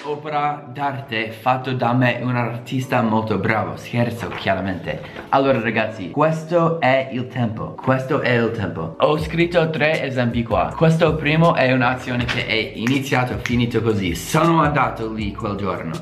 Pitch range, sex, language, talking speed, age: 110-145 Hz, male, Italian, 150 wpm, 20-39